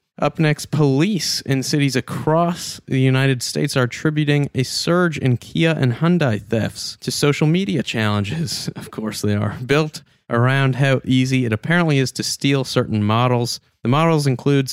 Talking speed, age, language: 165 wpm, 30-49, English